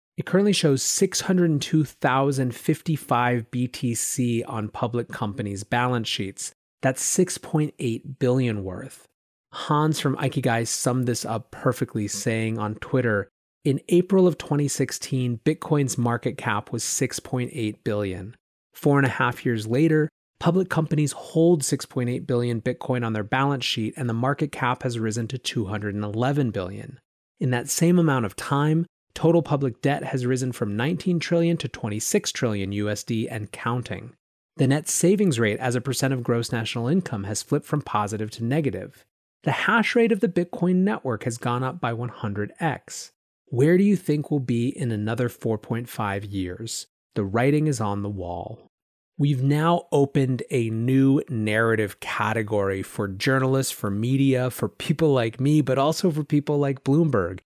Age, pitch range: 30-49, 115-150 Hz